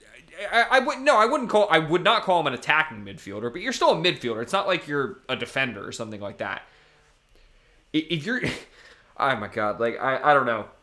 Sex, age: male, 20-39